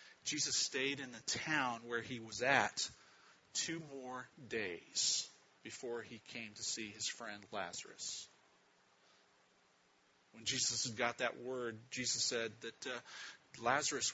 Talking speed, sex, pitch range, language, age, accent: 130 wpm, male, 115-140 Hz, English, 40-59, American